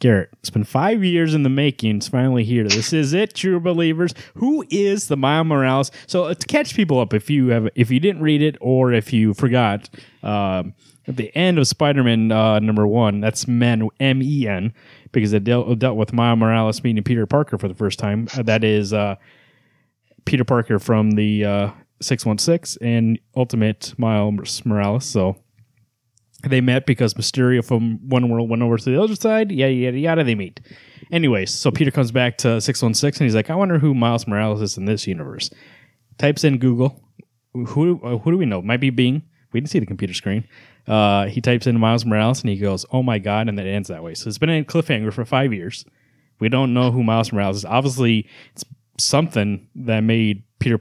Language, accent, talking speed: English, American, 205 wpm